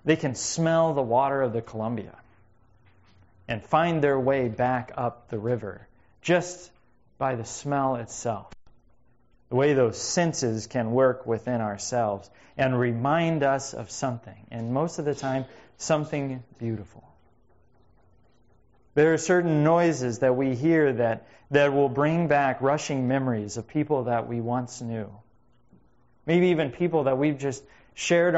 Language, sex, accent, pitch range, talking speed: English, male, American, 110-140 Hz, 145 wpm